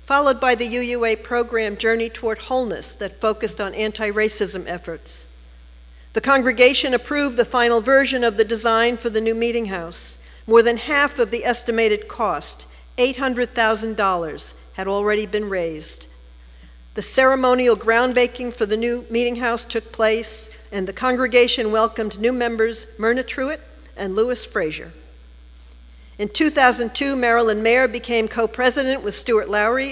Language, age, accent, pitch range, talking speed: English, 50-69, American, 205-245 Hz, 140 wpm